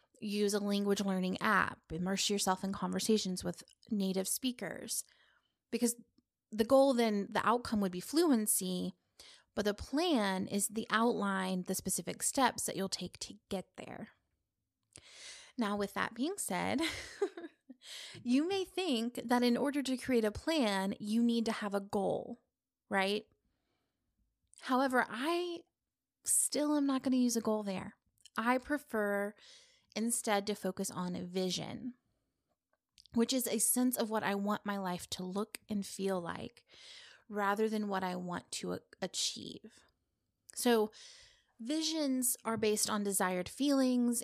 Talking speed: 145 wpm